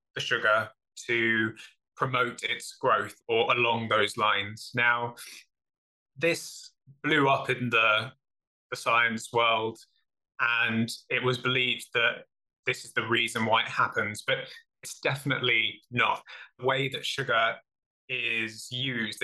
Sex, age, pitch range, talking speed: male, 20-39, 115-145 Hz, 130 wpm